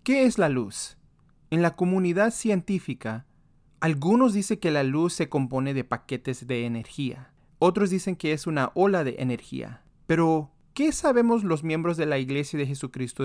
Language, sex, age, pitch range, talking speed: Spanish, male, 30-49, 135-190 Hz, 170 wpm